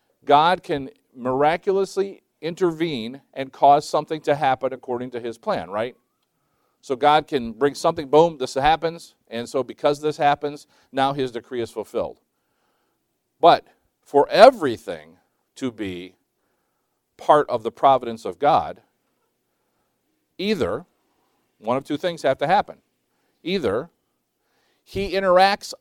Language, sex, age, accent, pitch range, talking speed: English, male, 50-69, American, 125-180 Hz, 125 wpm